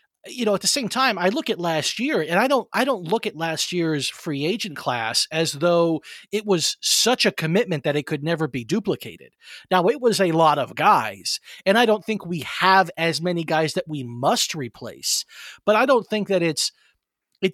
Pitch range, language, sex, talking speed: 160-205 Hz, English, male, 215 wpm